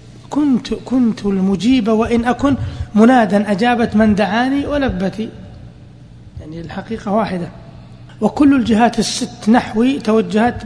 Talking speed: 100 wpm